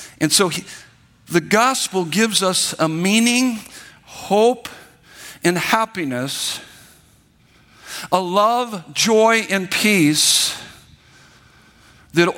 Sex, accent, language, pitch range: male, American, English, 150-205 Hz